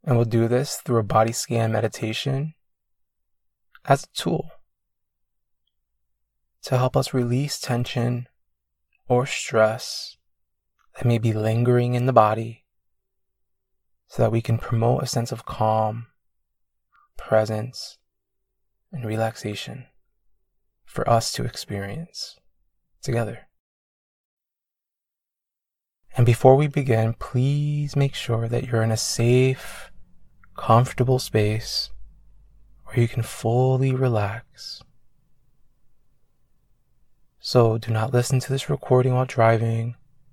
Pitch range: 105-130 Hz